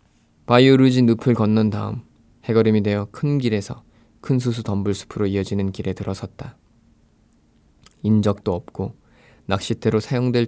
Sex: male